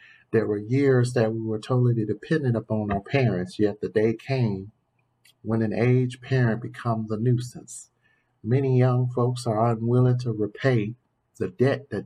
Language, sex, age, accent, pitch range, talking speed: English, male, 50-69, American, 105-125 Hz, 160 wpm